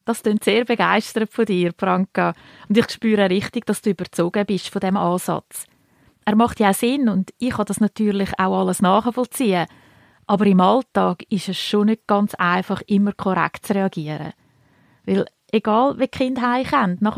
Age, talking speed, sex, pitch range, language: 30-49, 175 wpm, female, 185-230 Hz, German